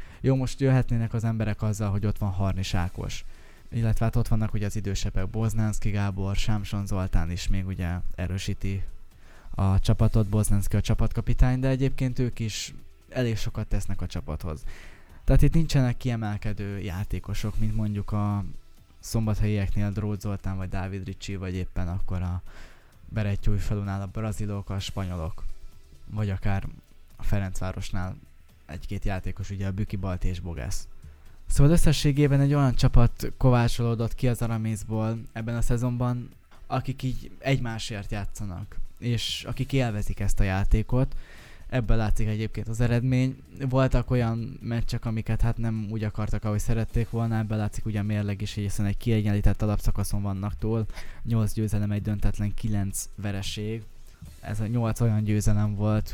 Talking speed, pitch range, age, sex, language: 145 wpm, 95-115 Hz, 20-39, male, Hungarian